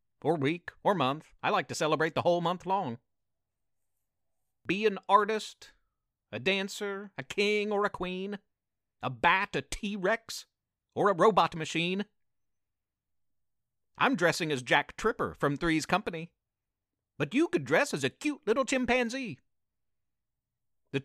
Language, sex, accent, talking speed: English, male, American, 135 wpm